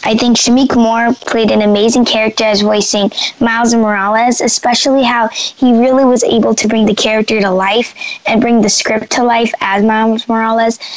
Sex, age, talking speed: female, 10-29, 180 wpm